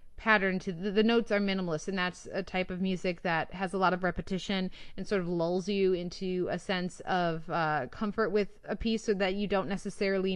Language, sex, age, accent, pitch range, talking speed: English, female, 20-39, American, 170-195 Hz, 220 wpm